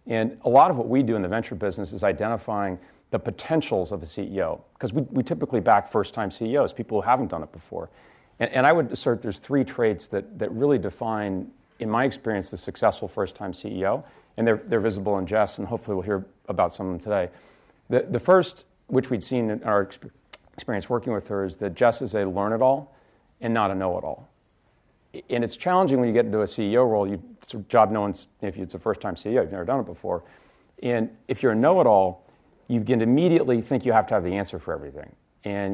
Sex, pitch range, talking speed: male, 100-120 Hz, 220 wpm